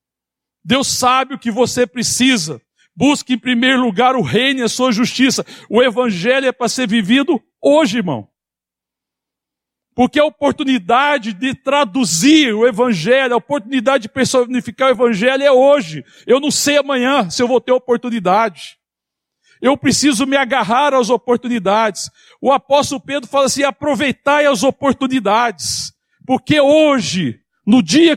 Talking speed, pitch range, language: 140 wpm, 235-280 Hz, Portuguese